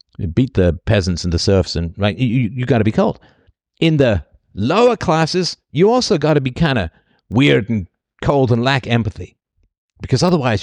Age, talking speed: 50-69, 180 wpm